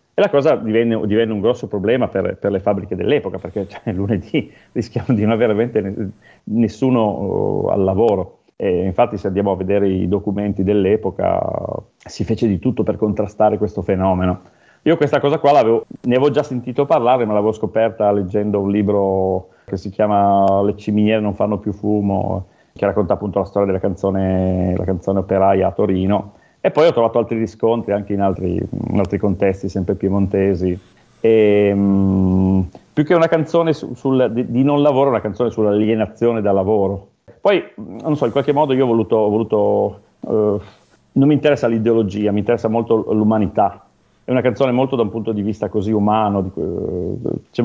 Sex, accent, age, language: male, Italian, 30-49, English